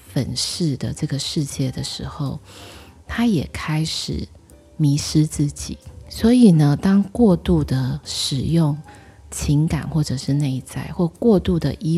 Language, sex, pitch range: Chinese, female, 130-160 Hz